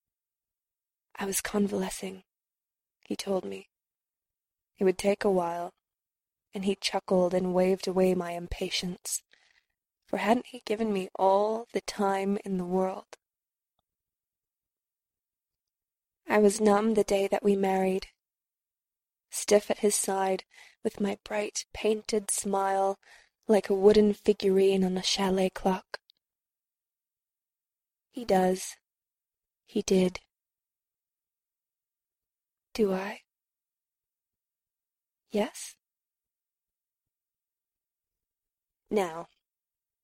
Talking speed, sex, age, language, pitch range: 95 wpm, female, 20-39, English, 190-210 Hz